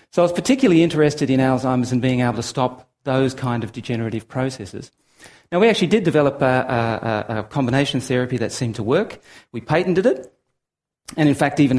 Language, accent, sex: English, Australian, male